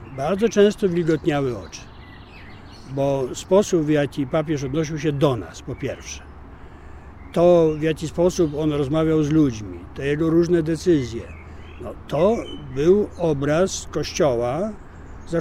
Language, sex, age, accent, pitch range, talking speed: Polish, male, 50-69, native, 125-175 Hz, 125 wpm